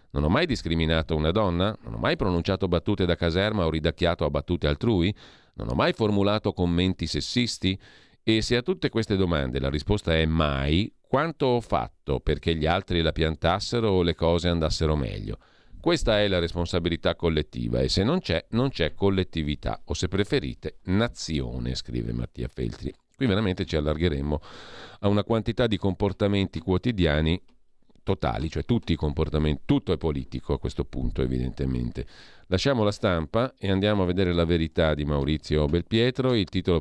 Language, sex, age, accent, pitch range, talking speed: Italian, male, 40-59, native, 80-105 Hz, 165 wpm